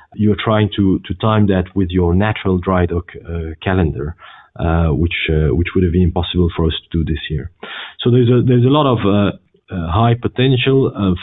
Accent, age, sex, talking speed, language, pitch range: French, 40-59, male, 215 wpm, English, 90-110 Hz